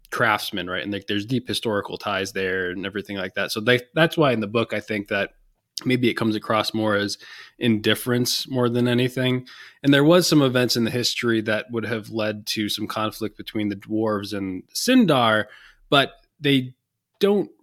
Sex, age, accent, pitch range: male, 20-39, American, 105-125 Hz